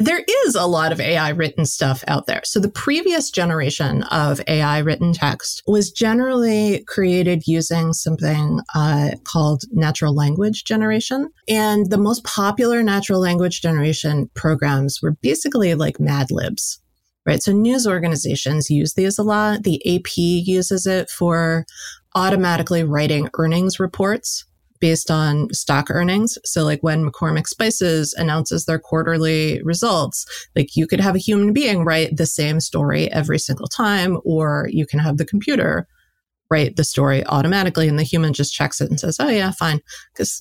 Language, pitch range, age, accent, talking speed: English, 155-200 Hz, 30-49, American, 160 wpm